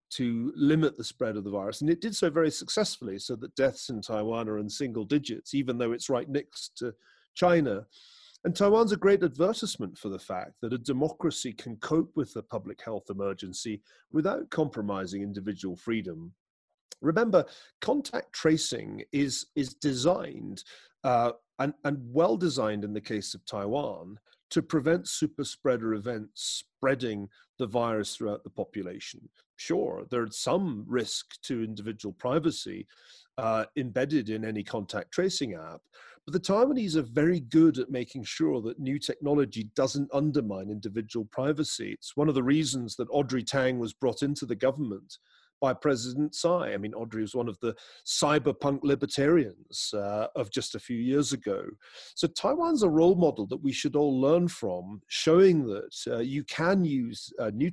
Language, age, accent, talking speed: English, 40-59, British, 165 wpm